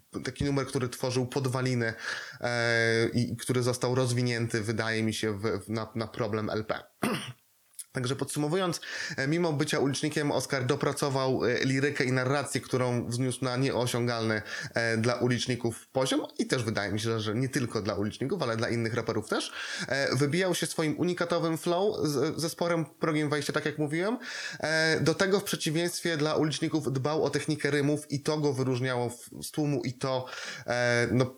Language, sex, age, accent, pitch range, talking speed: Polish, male, 20-39, native, 115-145 Hz, 150 wpm